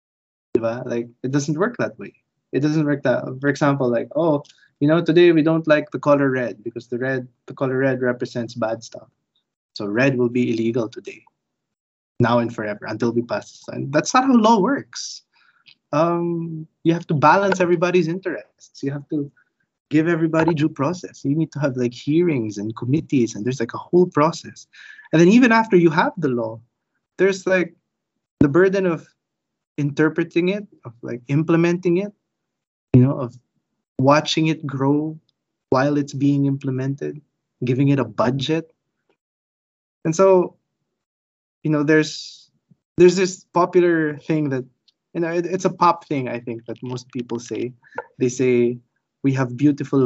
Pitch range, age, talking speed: 120-165 Hz, 20-39, 165 wpm